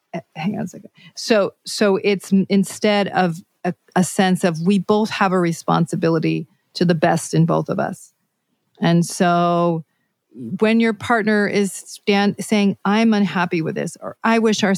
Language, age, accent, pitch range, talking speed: English, 40-59, American, 170-205 Hz, 165 wpm